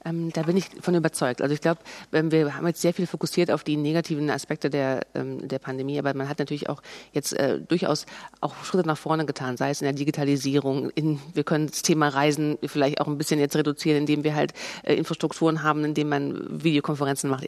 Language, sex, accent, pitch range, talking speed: German, female, German, 145-180 Hz, 220 wpm